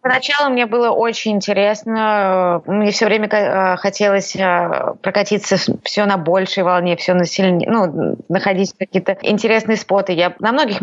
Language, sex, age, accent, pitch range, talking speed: Russian, female, 20-39, native, 185-235 Hz, 140 wpm